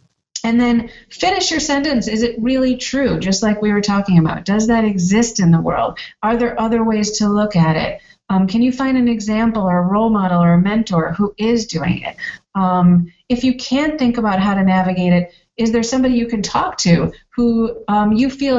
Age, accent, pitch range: 40-59, American, 195-240 Hz